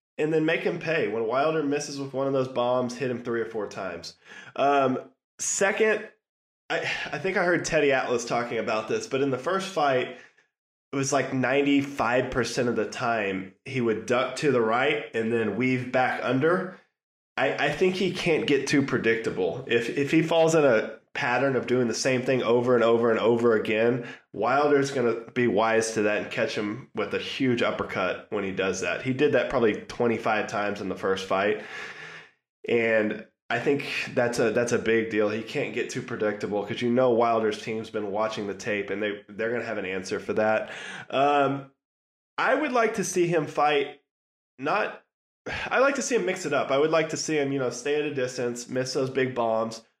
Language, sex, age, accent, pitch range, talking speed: English, male, 20-39, American, 115-145 Hz, 205 wpm